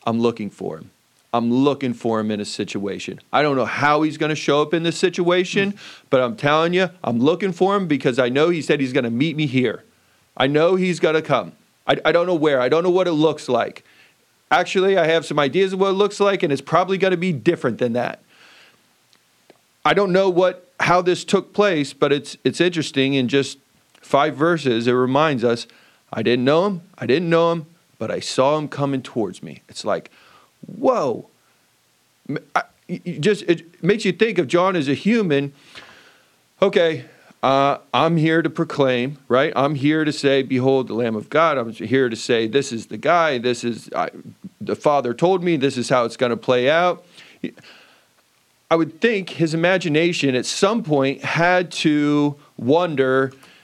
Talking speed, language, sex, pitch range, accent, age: 195 wpm, English, male, 130-175 Hz, American, 30-49